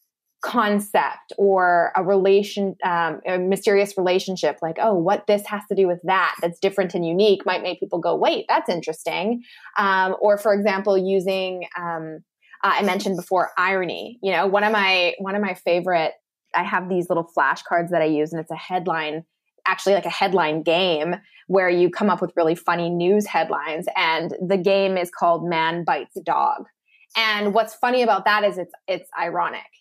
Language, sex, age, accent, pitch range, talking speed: English, female, 20-39, American, 175-205 Hz, 185 wpm